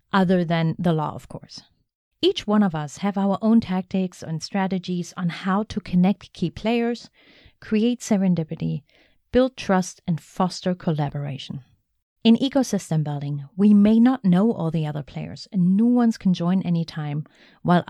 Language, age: English, 30-49